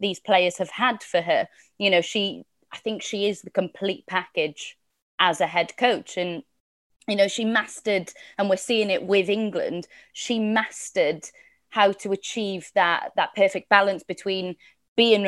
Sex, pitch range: female, 195-230 Hz